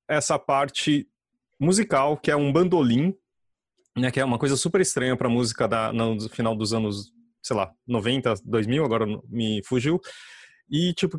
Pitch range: 125-155 Hz